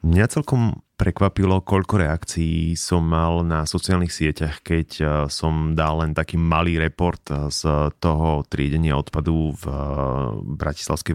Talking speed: 125 wpm